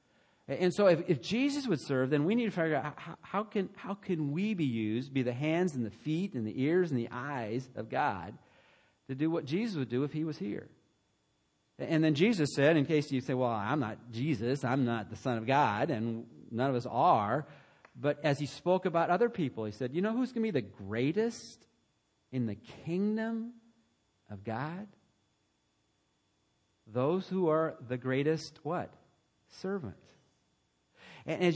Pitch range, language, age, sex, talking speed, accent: 125-170 Hz, English, 40-59, male, 185 wpm, American